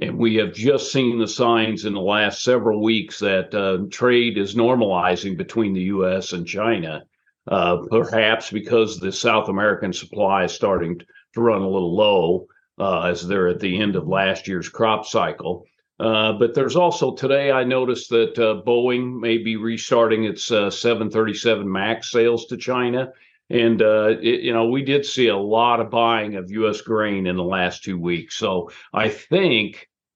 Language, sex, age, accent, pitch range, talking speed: English, male, 50-69, American, 100-120 Hz, 180 wpm